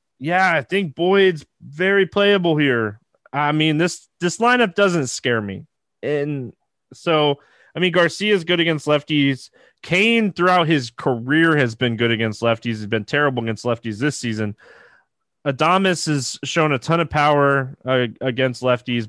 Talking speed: 155 wpm